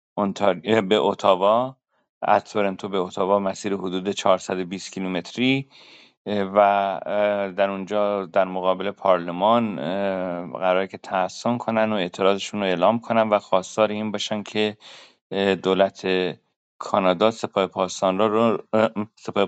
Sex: male